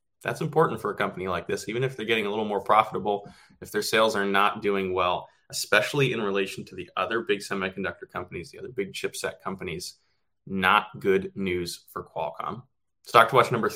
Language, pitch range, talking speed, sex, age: English, 105-130 Hz, 195 wpm, male, 20-39